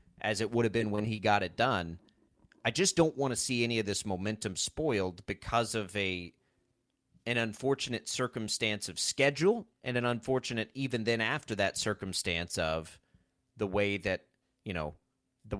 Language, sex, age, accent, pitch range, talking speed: English, male, 30-49, American, 105-135 Hz, 170 wpm